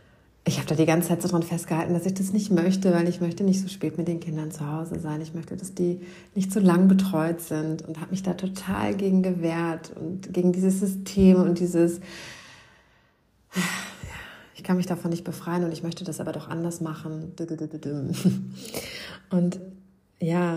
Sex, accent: female, German